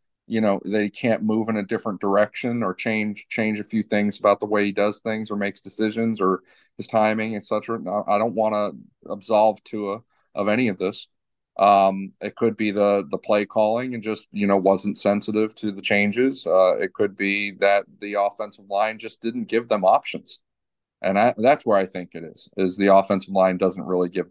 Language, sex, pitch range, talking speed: English, male, 95-110 Hz, 210 wpm